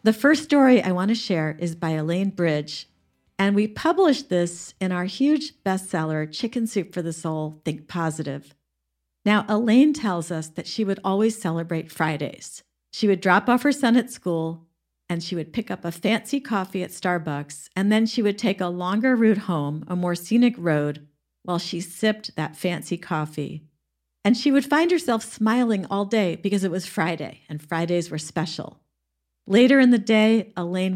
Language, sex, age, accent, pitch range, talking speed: English, female, 50-69, American, 155-210 Hz, 180 wpm